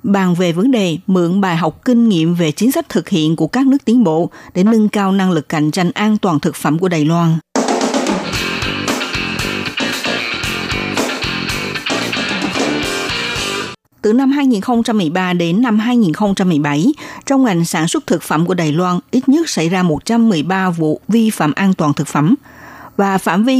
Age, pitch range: 60-79, 170-230 Hz